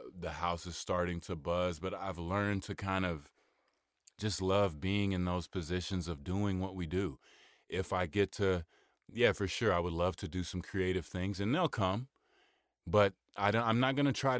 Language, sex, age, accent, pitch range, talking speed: English, male, 30-49, American, 90-100 Hz, 200 wpm